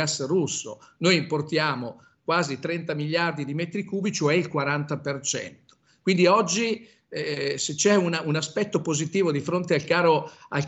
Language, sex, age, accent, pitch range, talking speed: Italian, male, 50-69, native, 150-185 Hz, 150 wpm